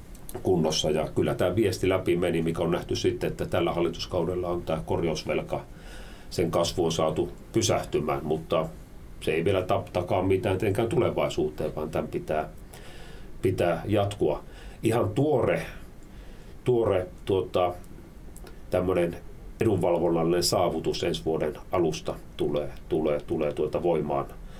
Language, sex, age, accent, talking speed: Finnish, male, 40-59, native, 110 wpm